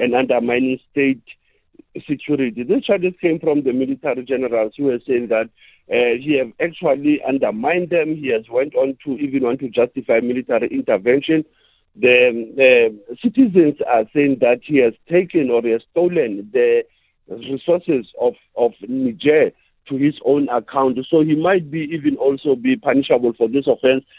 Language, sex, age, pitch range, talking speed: English, male, 50-69, 130-180 Hz, 160 wpm